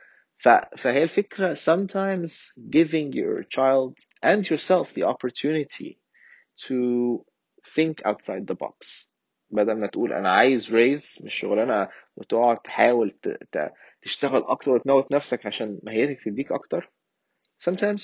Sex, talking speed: male, 105 wpm